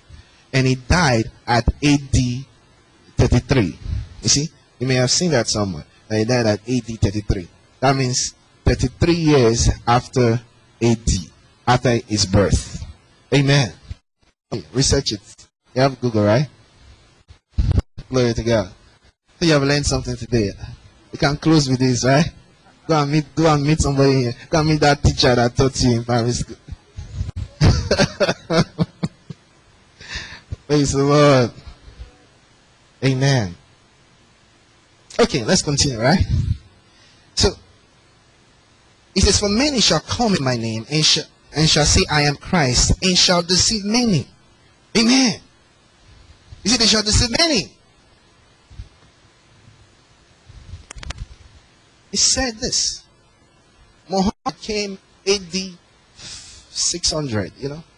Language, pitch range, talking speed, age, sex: English, 105-145 Hz, 120 wpm, 20-39, male